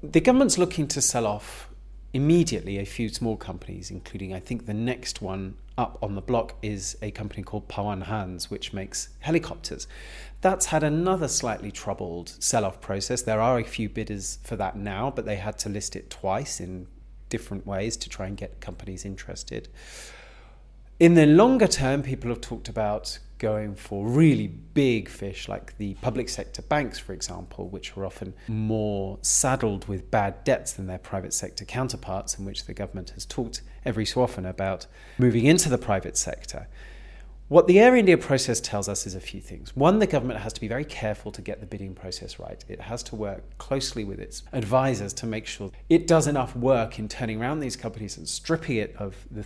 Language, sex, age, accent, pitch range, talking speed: English, male, 40-59, British, 95-130 Hz, 195 wpm